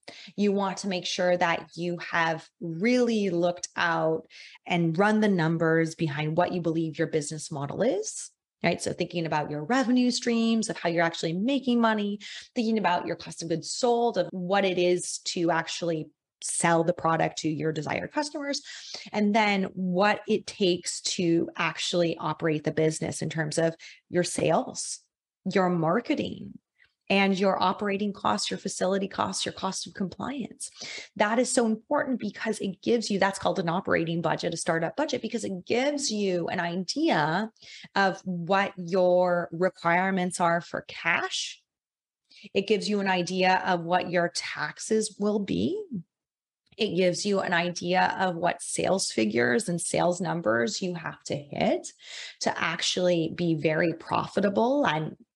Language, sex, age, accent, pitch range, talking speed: English, female, 20-39, American, 170-210 Hz, 160 wpm